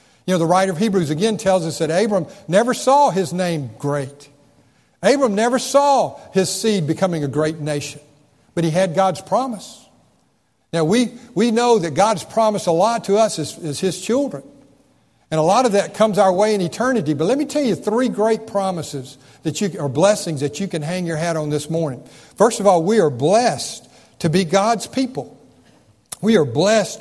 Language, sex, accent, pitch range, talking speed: English, male, American, 155-205 Hz, 200 wpm